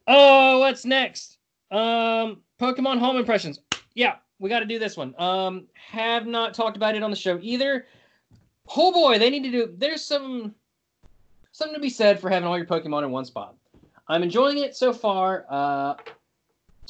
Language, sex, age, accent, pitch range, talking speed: English, male, 20-39, American, 140-205 Hz, 180 wpm